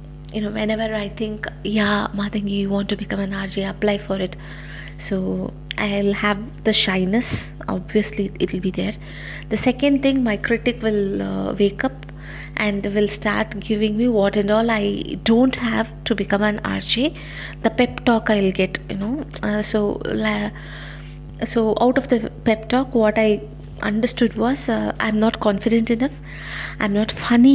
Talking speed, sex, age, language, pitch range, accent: 170 wpm, female, 30-49, Tamil, 165-230 Hz, native